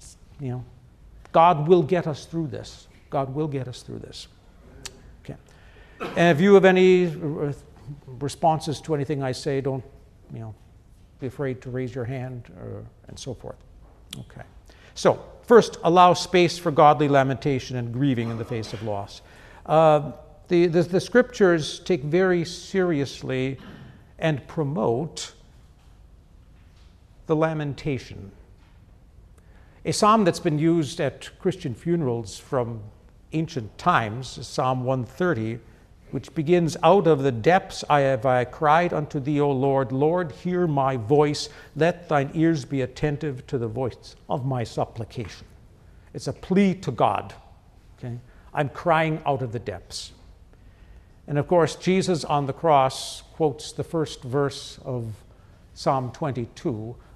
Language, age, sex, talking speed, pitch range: English, 60-79, male, 140 wpm, 115-160 Hz